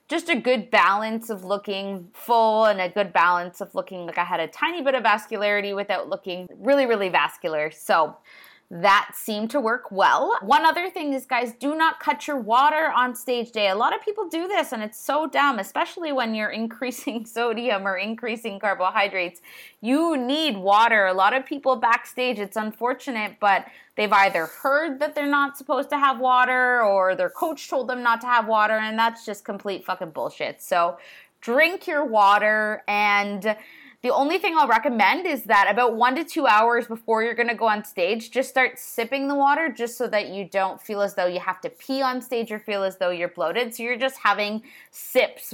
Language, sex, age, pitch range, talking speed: English, female, 20-39, 195-265 Hz, 200 wpm